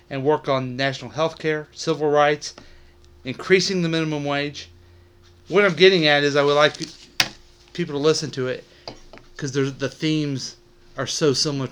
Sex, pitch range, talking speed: male, 115-135 Hz, 160 wpm